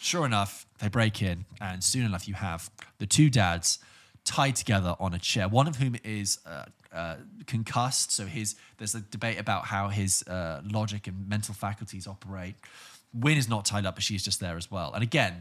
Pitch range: 95-120 Hz